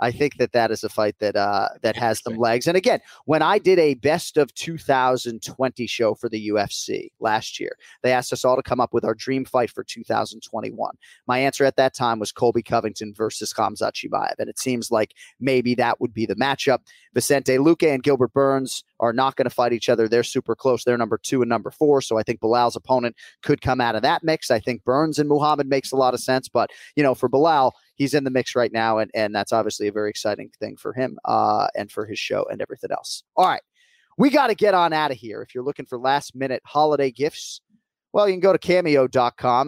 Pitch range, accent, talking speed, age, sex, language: 115-145 Hz, American, 235 wpm, 30-49, male, English